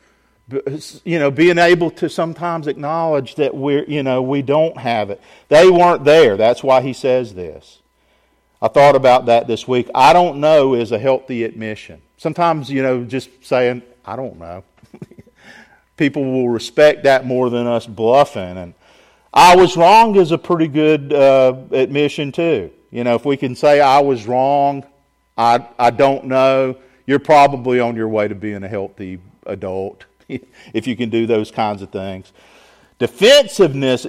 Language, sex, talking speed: English, male, 165 wpm